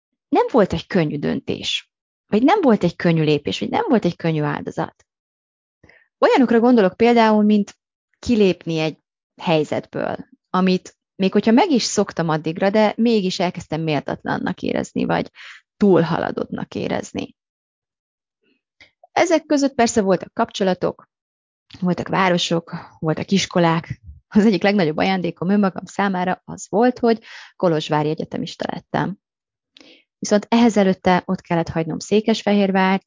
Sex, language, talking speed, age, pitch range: female, Hungarian, 125 wpm, 30-49, 165-215 Hz